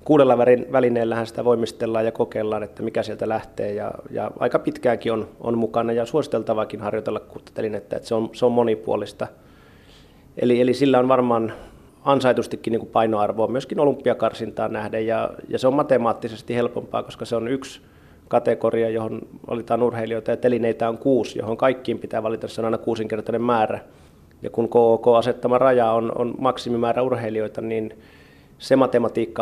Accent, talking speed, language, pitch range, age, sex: native, 160 wpm, Finnish, 110-125 Hz, 30-49, male